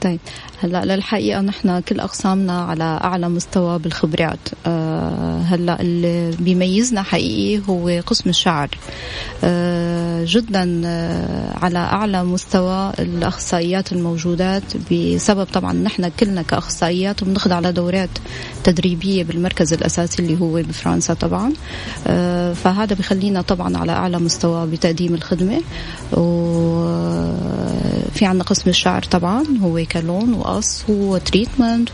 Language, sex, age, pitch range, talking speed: Arabic, female, 30-49, 165-190 Hz, 110 wpm